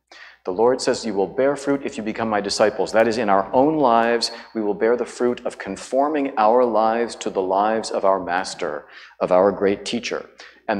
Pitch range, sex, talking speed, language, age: 100-135 Hz, male, 210 wpm, English, 40-59